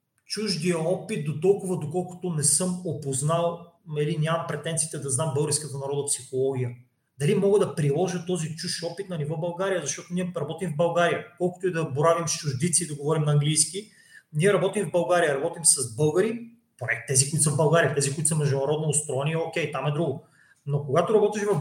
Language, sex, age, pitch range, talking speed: Bulgarian, male, 30-49, 150-195 Hz, 190 wpm